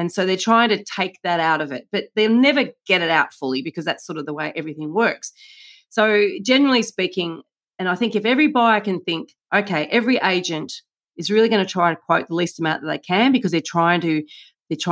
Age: 40-59